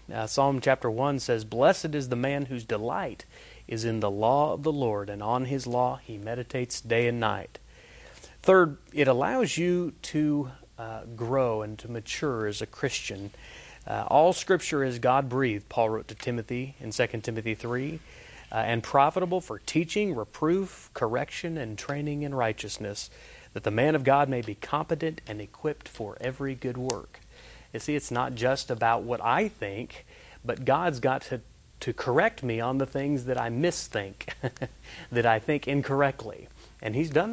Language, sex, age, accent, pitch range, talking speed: English, male, 30-49, American, 110-140 Hz, 170 wpm